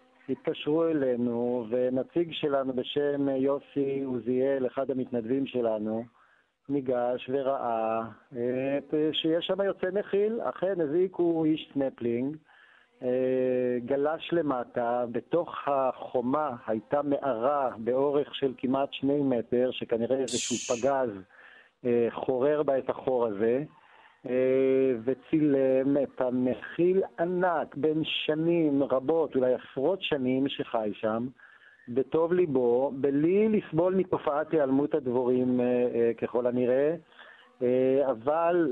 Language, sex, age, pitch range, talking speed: Hebrew, male, 50-69, 125-155 Hz, 100 wpm